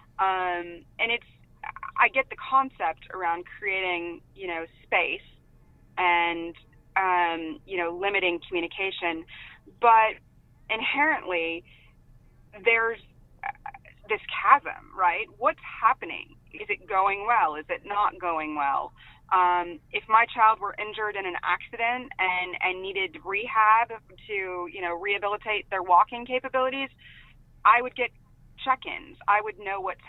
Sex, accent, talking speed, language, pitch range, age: female, American, 125 wpm, English, 180-245 Hz, 20-39